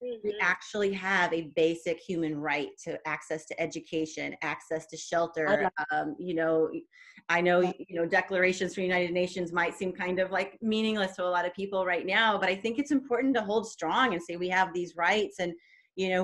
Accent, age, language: American, 30-49, English